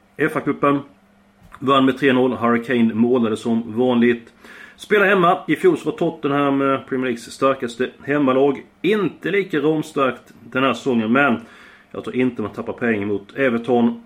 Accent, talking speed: native, 145 wpm